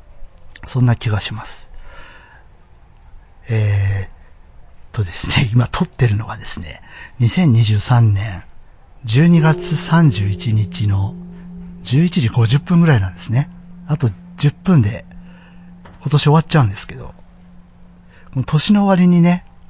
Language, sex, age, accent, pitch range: Japanese, male, 60-79, native, 95-150 Hz